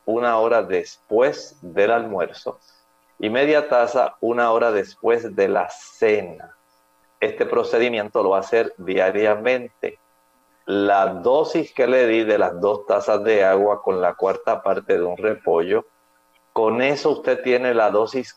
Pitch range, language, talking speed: 85-125 Hz, Spanish, 145 wpm